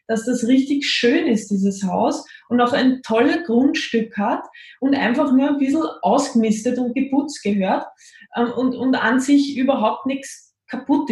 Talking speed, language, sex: 155 wpm, German, female